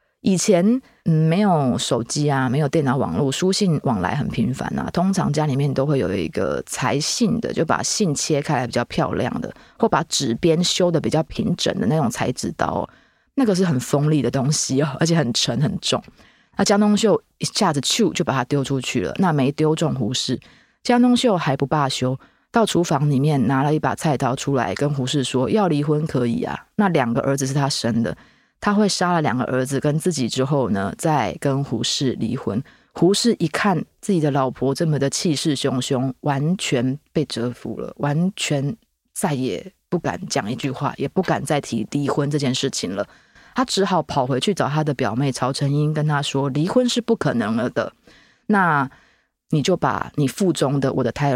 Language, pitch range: Chinese, 135-170 Hz